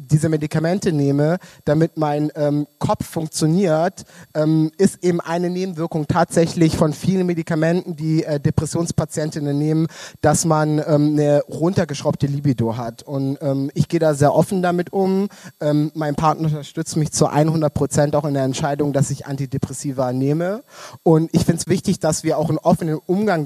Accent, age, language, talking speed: German, 30-49, German, 165 wpm